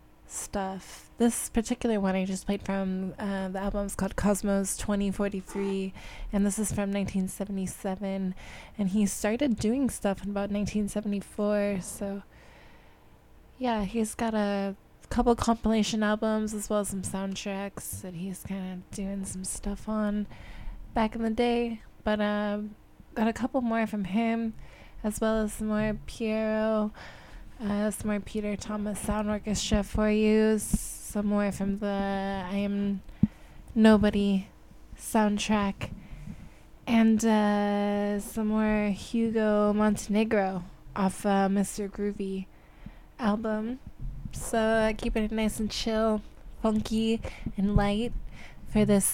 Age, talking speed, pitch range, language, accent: 20-39, 130 wpm, 195-220 Hz, English, American